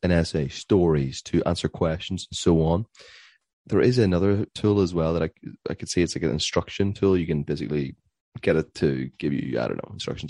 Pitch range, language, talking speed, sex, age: 80-100 Hz, English, 215 wpm, male, 30-49